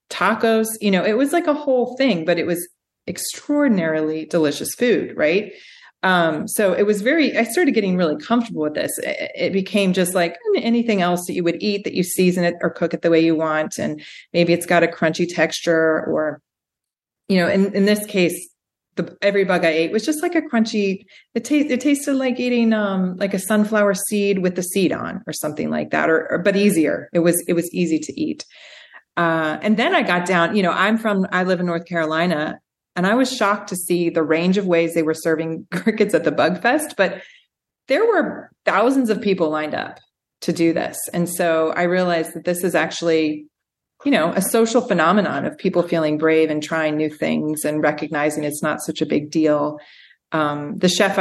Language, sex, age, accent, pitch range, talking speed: English, female, 30-49, American, 165-215 Hz, 210 wpm